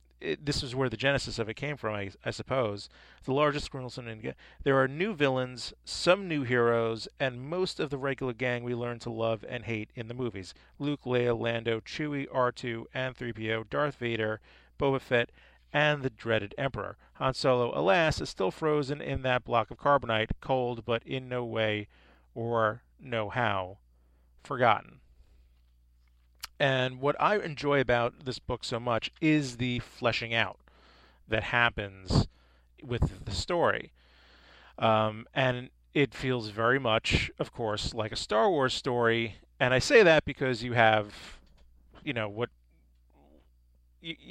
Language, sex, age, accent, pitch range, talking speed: English, male, 40-59, American, 100-130 Hz, 160 wpm